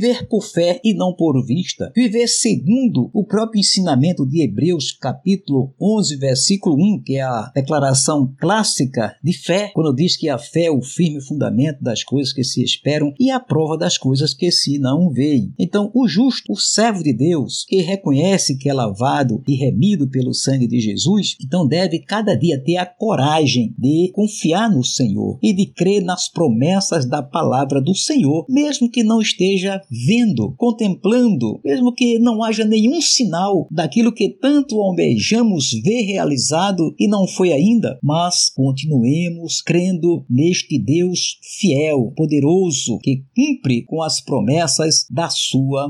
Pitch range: 140-210 Hz